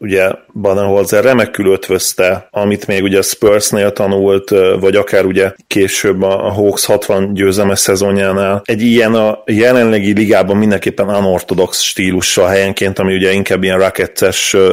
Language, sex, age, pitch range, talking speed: Hungarian, male, 30-49, 95-115 Hz, 130 wpm